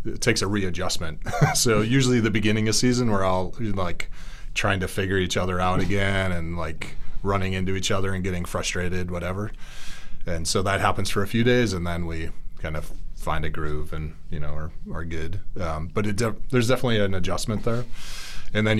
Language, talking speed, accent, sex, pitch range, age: English, 200 wpm, American, male, 80-100 Hz, 30-49